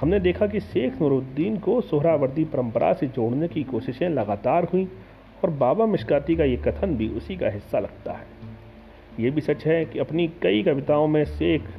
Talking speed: 185 wpm